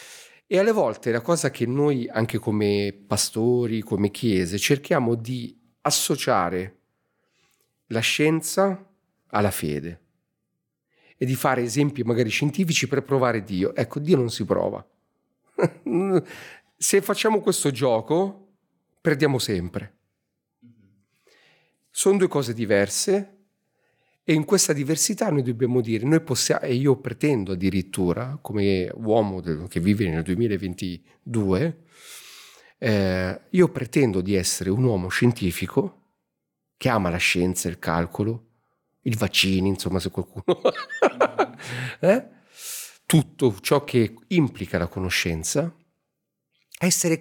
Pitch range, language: 100-160 Hz, Italian